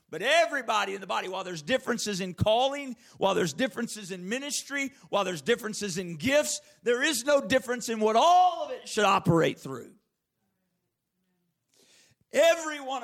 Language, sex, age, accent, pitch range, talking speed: English, male, 50-69, American, 185-265 Hz, 155 wpm